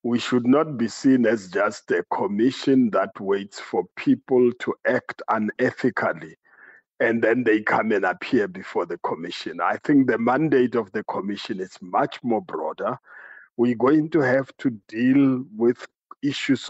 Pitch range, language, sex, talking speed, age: 115-135 Hz, English, male, 160 wpm, 50-69